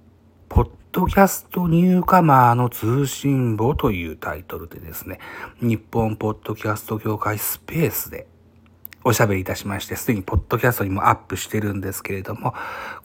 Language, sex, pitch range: Japanese, male, 100-145 Hz